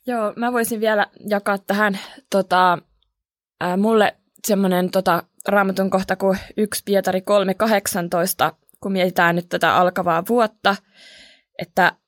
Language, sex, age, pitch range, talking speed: Finnish, female, 20-39, 175-200 Hz, 120 wpm